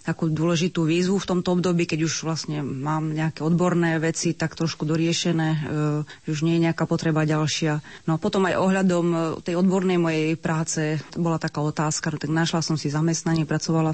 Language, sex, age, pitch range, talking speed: Slovak, female, 30-49, 160-185 Hz, 185 wpm